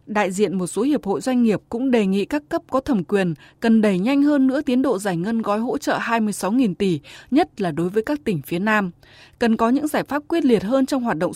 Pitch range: 195-265 Hz